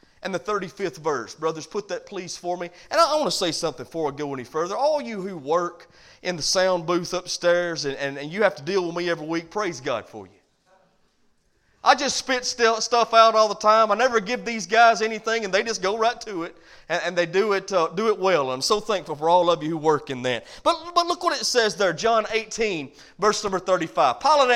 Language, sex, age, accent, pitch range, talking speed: English, male, 30-49, American, 175-255 Hz, 240 wpm